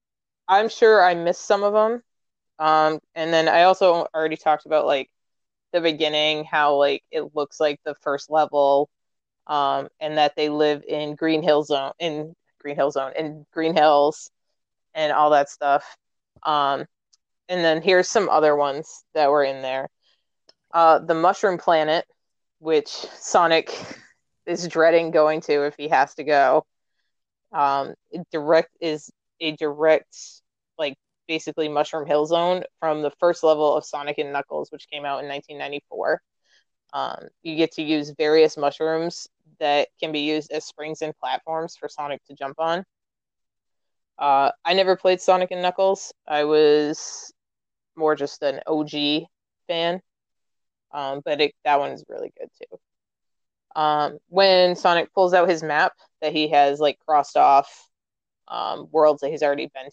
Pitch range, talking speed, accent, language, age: 145-170 Hz, 155 wpm, American, English, 20-39